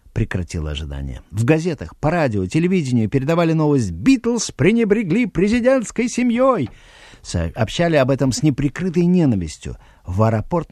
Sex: male